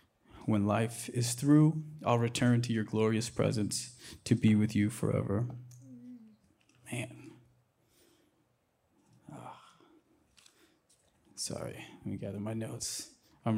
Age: 20-39